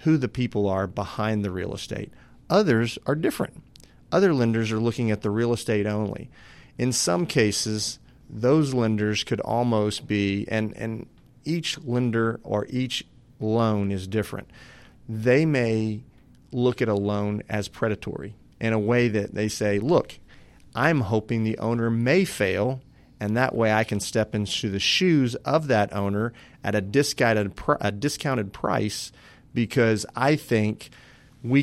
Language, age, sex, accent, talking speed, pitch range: English, 40-59, male, American, 150 wpm, 105-125 Hz